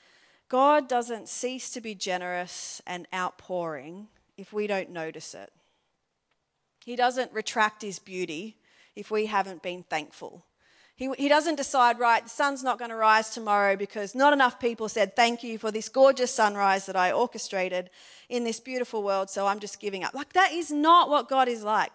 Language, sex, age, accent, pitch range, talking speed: English, female, 40-59, Australian, 190-255 Hz, 180 wpm